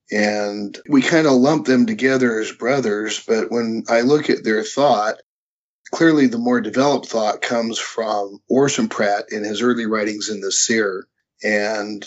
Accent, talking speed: American, 165 wpm